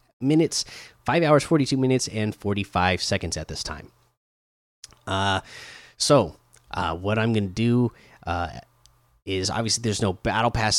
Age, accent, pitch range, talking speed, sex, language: 30-49, American, 100-140 Hz, 140 wpm, male, English